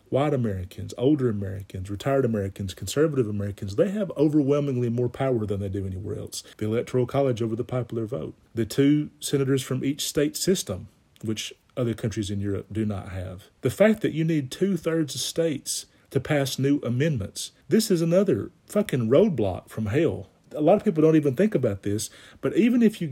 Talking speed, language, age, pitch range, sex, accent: 185 wpm, English, 40-59, 105-150 Hz, male, American